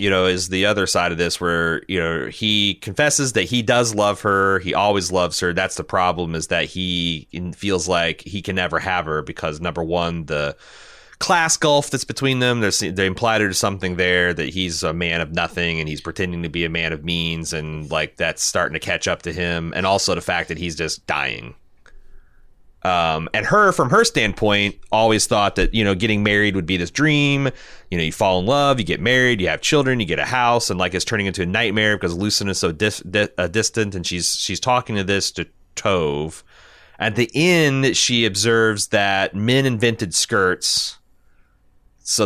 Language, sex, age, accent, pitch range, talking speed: English, male, 30-49, American, 85-110 Hz, 210 wpm